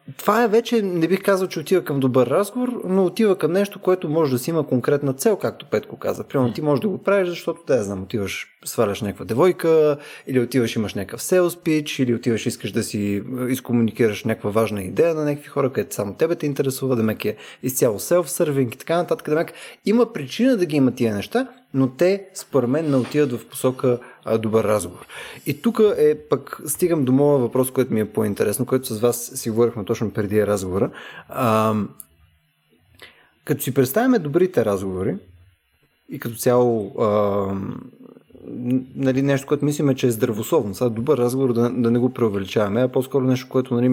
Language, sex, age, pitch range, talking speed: Bulgarian, male, 20-39, 115-155 Hz, 190 wpm